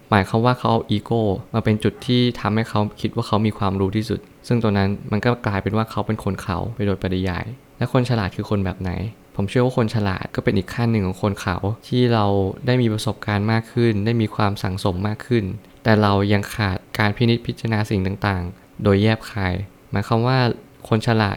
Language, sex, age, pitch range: Thai, male, 20-39, 100-115 Hz